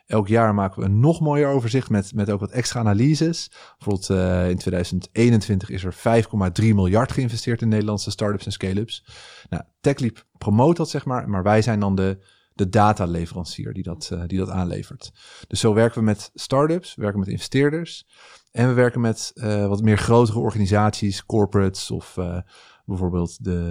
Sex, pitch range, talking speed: male, 95-115 Hz, 175 wpm